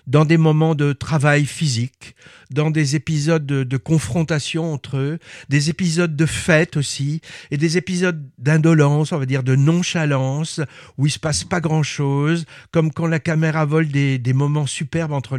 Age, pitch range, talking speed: 50-69, 135-170 Hz, 175 wpm